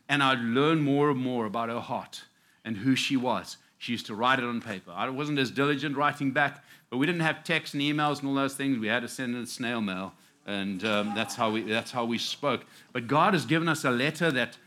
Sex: male